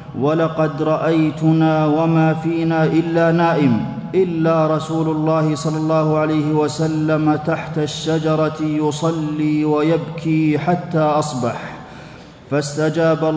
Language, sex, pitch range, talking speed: Arabic, male, 155-160 Hz, 90 wpm